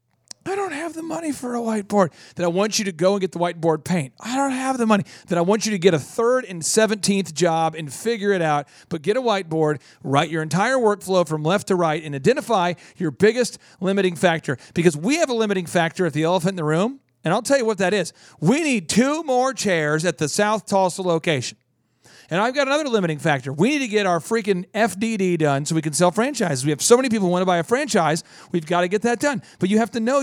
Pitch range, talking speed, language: 170-220 Hz, 250 wpm, English